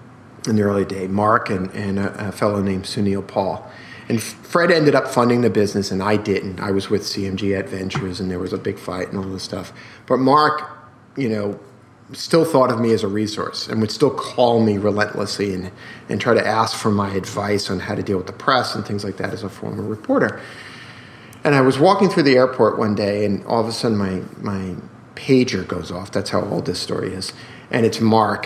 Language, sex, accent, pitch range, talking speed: English, male, American, 100-125 Hz, 220 wpm